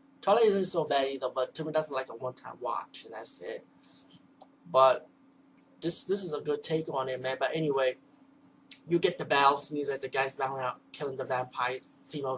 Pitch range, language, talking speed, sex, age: 130-160 Hz, English, 210 wpm, male, 20-39